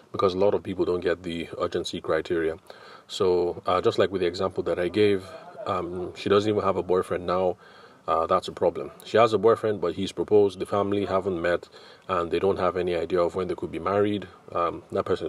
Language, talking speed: English, 230 wpm